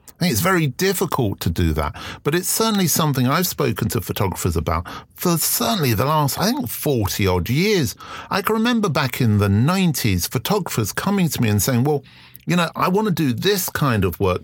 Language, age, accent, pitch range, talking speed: English, 50-69, British, 110-150 Hz, 195 wpm